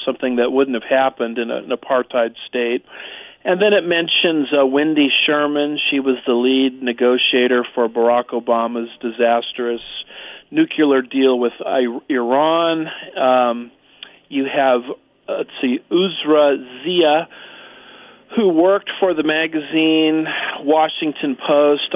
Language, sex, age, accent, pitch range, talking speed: English, male, 40-59, American, 125-150 Hz, 125 wpm